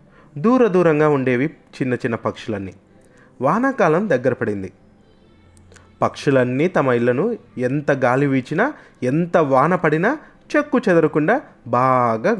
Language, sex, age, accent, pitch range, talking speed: Telugu, male, 30-49, native, 110-170 Hz, 100 wpm